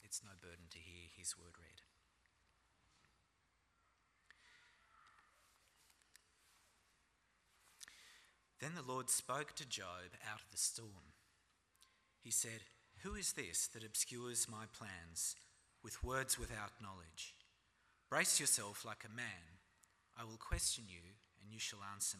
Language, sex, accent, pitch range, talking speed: English, male, Australian, 90-120 Hz, 120 wpm